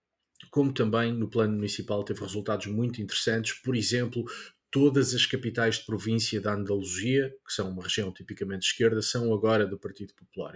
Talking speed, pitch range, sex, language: 165 wpm, 105-120 Hz, male, Portuguese